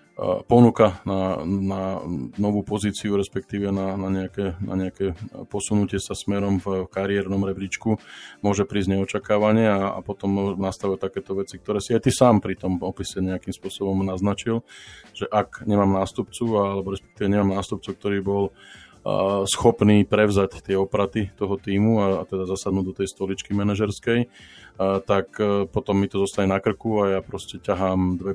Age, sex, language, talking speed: 20-39, male, Slovak, 160 wpm